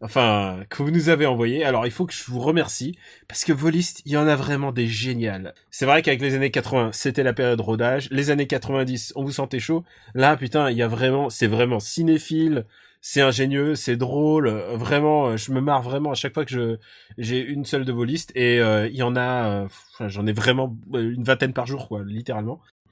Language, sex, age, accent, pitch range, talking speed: French, male, 20-39, French, 120-160 Hz, 225 wpm